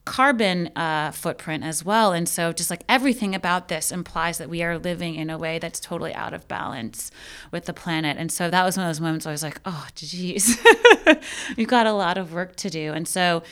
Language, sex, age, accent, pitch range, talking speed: English, female, 30-49, American, 155-180 Hz, 225 wpm